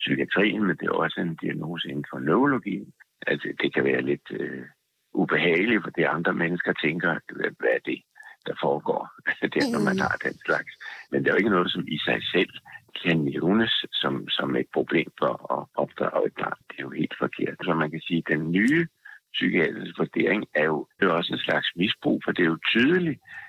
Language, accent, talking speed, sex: Danish, native, 215 wpm, male